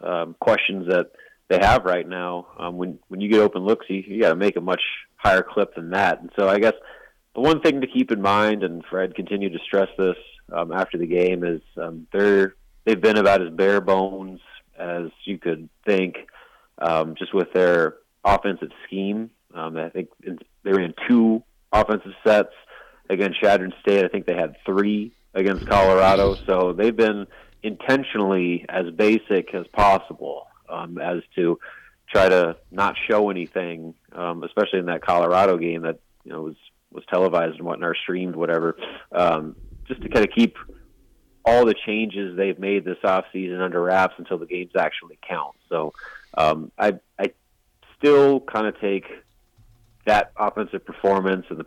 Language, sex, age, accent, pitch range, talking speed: English, male, 30-49, American, 90-105 Hz, 170 wpm